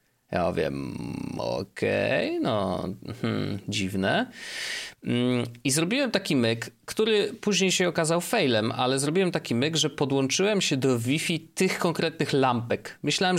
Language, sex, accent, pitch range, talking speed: Polish, male, native, 110-150 Hz, 130 wpm